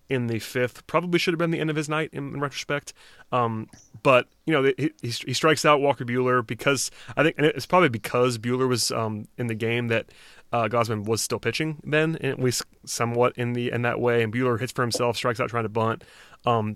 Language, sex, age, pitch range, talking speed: English, male, 30-49, 115-135 Hz, 235 wpm